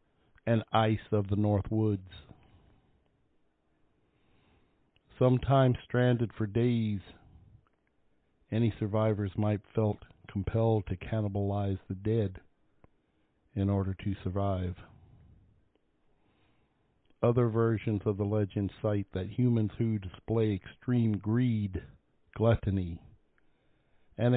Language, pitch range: English, 100-115 Hz